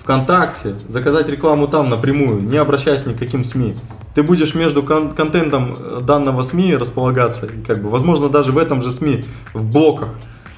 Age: 20-39